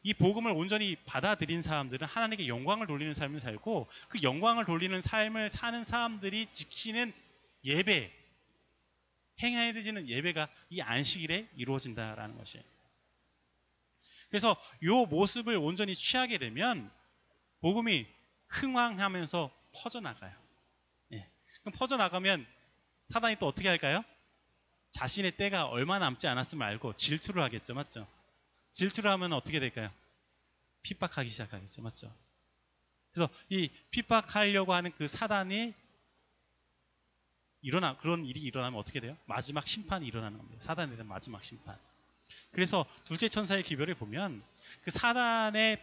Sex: male